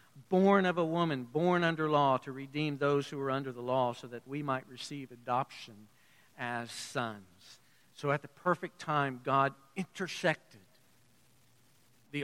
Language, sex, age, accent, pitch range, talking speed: English, male, 50-69, American, 135-200 Hz, 150 wpm